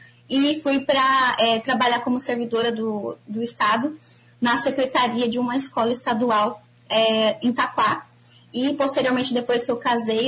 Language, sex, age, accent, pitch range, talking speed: Portuguese, female, 10-29, Brazilian, 235-280 Hz, 135 wpm